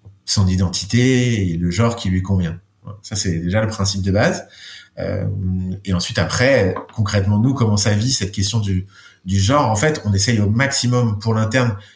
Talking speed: 185 wpm